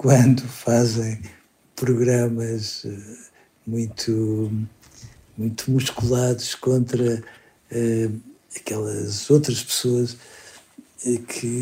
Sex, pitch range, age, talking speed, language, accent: male, 115-135 Hz, 60-79, 60 wpm, Portuguese, Portuguese